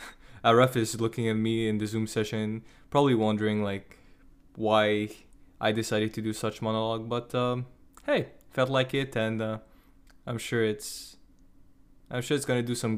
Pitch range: 110-135 Hz